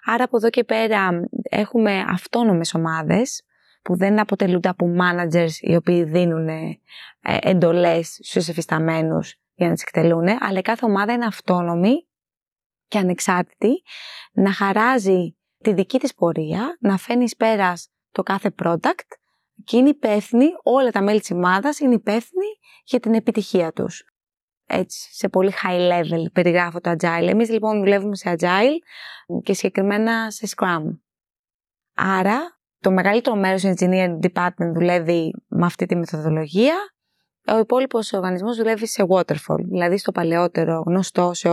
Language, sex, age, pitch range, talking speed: Greek, female, 20-39, 175-225 Hz, 140 wpm